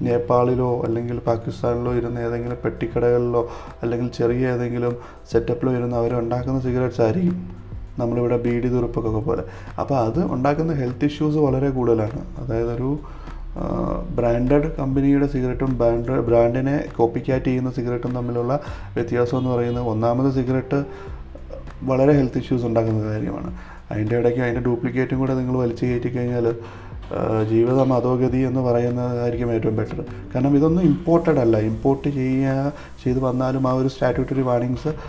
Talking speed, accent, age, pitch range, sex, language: 125 wpm, native, 30-49, 115-130 Hz, male, Malayalam